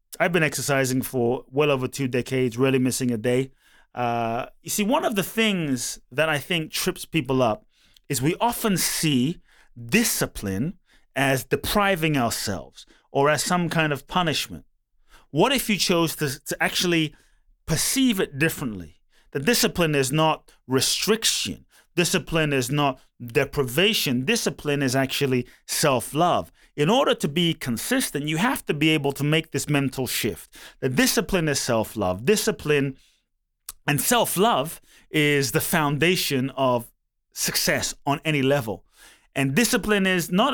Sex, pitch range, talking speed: male, 135-185 Hz, 140 wpm